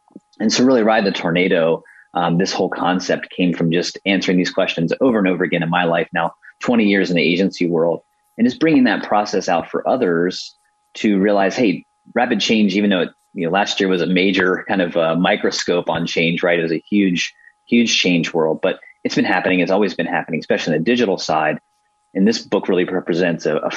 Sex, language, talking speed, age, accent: male, English, 220 wpm, 30-49, American